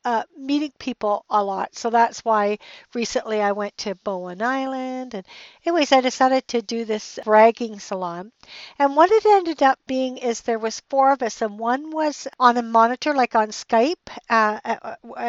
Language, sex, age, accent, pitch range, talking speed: English, female, 60-79, American, 215-260 Hz, 175 wpm